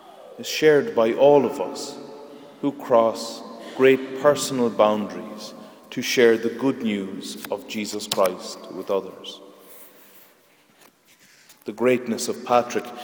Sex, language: male, English